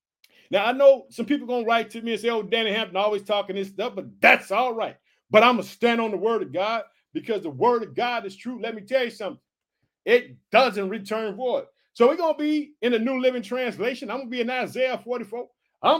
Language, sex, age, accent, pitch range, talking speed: English, male, 50-69, American, 230-290 Hz, 255 wpm